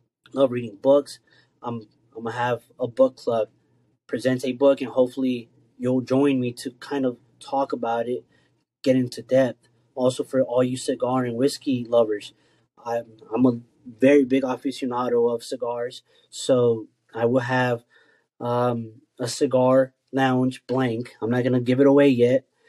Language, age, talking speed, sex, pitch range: English, 20-39, 155 wpm, male, 125-140 Hz